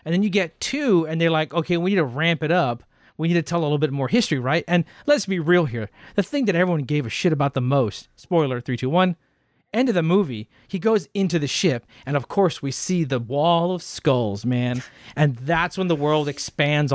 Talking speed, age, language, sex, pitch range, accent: 245 wpm, 40-59, English, male, 135-170 Hz, American